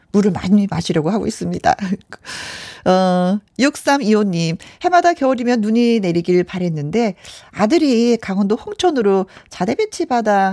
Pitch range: 165-235 Hz